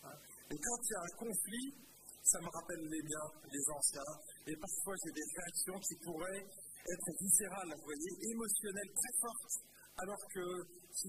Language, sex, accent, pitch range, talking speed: French, male, French, 165-210 Hz, 170 wpm